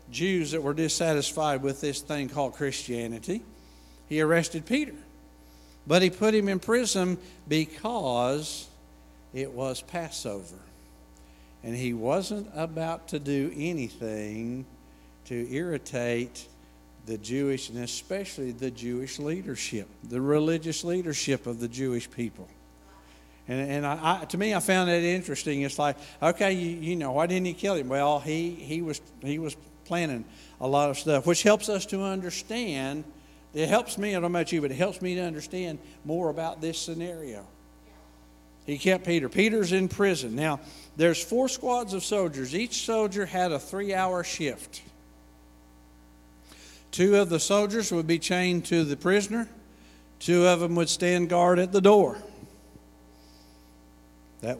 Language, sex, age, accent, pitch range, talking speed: English, male, 50-69, American, 105-175 Hz, 150 wpm